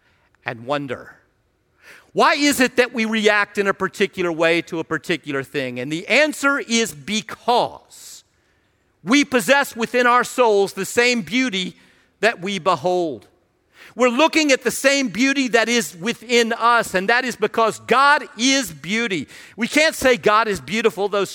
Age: 50-69